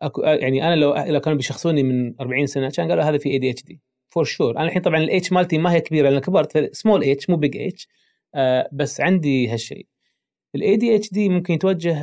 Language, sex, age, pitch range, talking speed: Arabic, male, 30-49, 140-185 Hz, 225 wpm